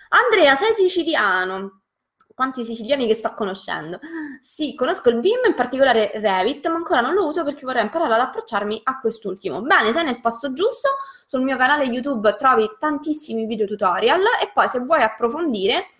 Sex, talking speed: female, 170 wpm